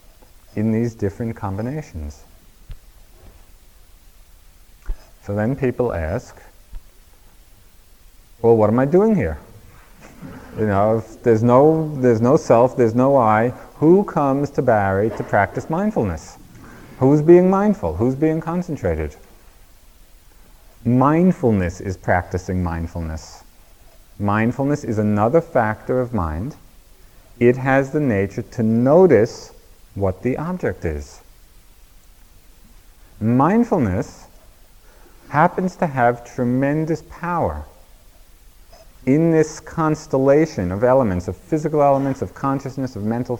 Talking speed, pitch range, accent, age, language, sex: 105 wpm, 90-135 Hz, American, 30-49, English, male